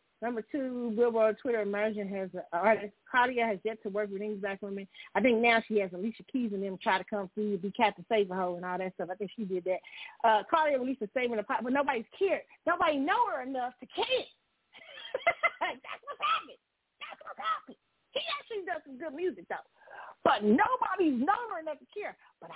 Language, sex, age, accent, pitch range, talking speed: English, female, 40-59, American, 210-325 Hz, 215 wpm